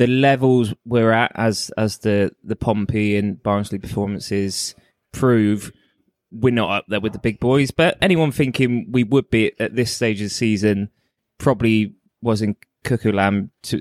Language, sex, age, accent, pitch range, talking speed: English, male, 20-39, British, 105-125 Hz, 165 wpm